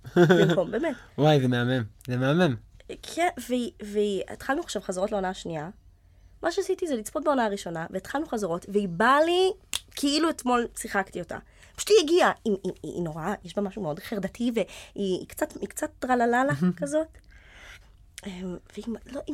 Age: 20-39